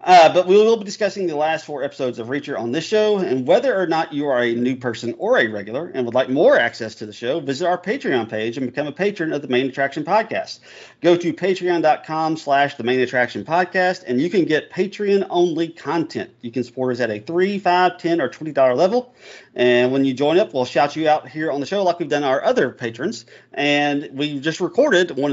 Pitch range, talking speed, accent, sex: 120-175 Hz, 230 wpm, American, male